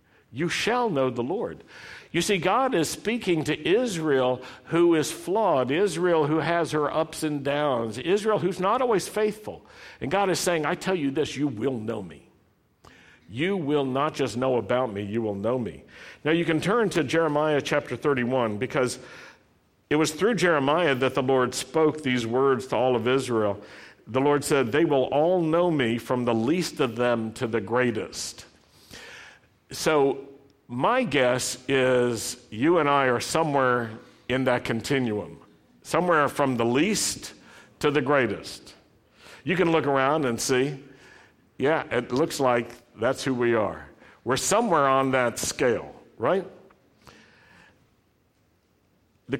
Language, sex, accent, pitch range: English, male, American, 125-160 Hz